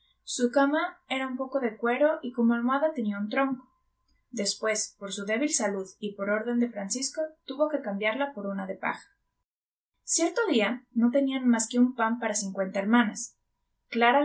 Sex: female